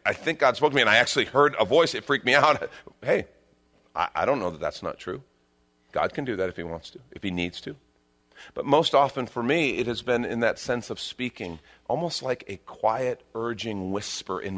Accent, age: American, 40-59